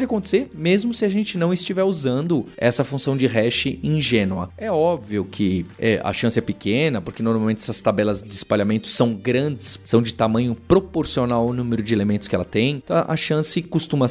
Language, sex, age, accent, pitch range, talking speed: Portuguese, male, 20-39, Brazilian, 120-180 Hz, 185 wpm